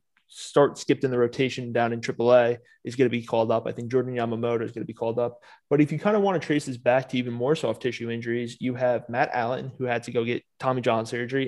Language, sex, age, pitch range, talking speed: English, male, 20-39, 120-140 Hz, 265 wpm